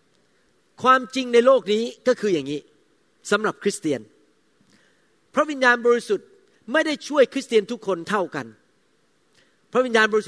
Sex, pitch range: male, 215-280 Hz